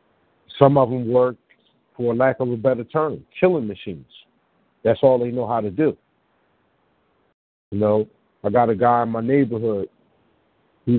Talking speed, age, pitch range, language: 160 wpm, 50-69, 110-130 Hz, English